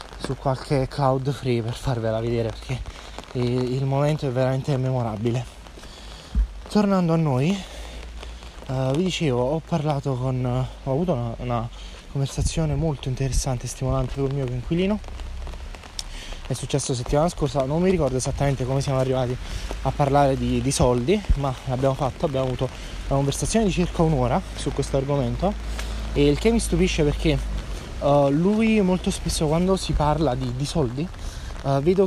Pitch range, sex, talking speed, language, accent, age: 125-155 Hz, male, 155 wpm, Italian, native, 20-39